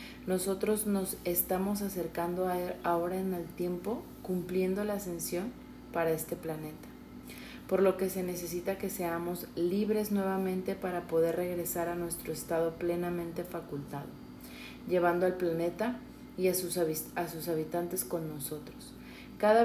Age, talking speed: 30-49, 135 wpm